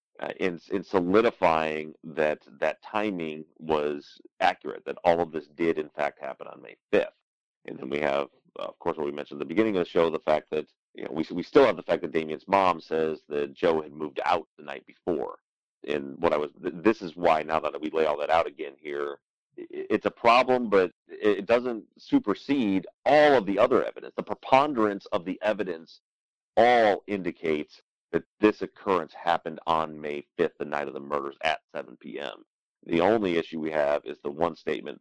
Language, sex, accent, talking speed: English, male, American, 205 wpm